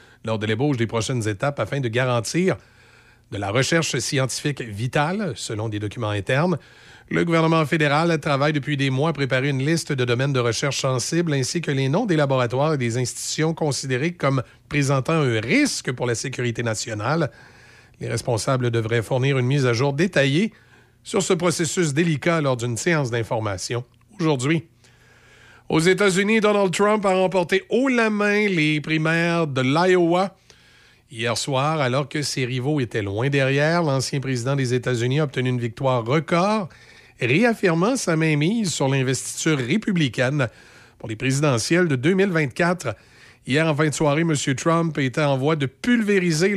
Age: 40-59